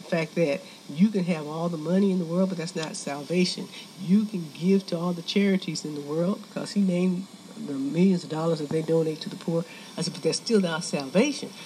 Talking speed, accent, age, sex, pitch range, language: 230 wpm, American, 60-79, female, 170-210 Hz, English